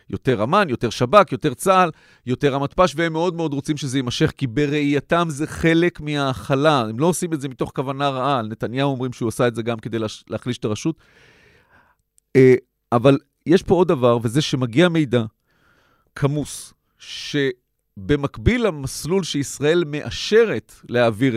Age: 40-59